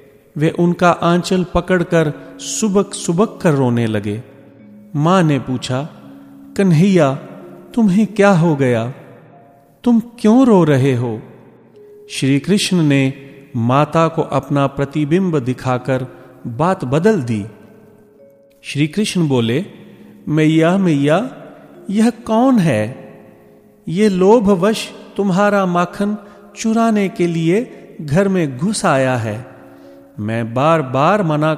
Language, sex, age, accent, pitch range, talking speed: Hindi, male, 40-59, native, 125-200 Hz, 110 wpm